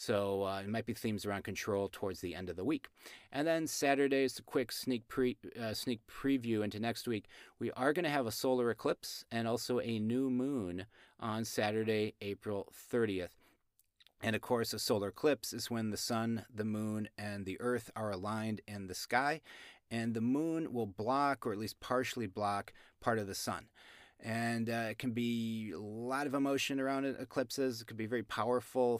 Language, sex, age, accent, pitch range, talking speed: English, male, 30-49, American, 110-125 Hz, 195 wpm